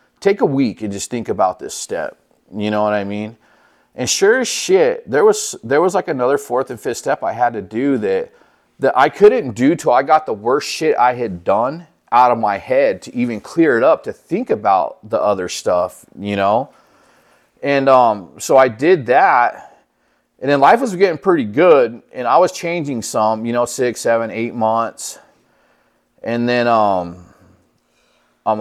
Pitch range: 115-155 Hz